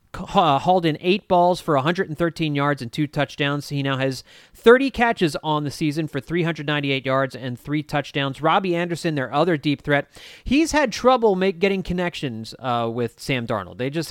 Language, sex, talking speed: English, male, 180 wpm